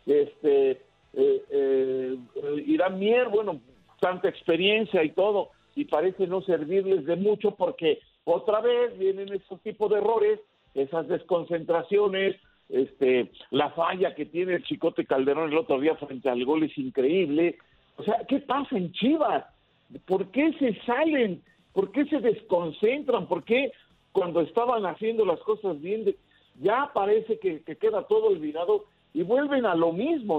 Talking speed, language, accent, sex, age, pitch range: 150 wpm, Spanish, Mexican, male, 50-69, 175-285 Hz